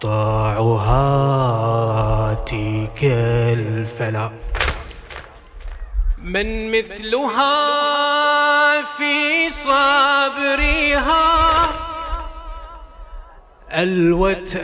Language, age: English, 30-49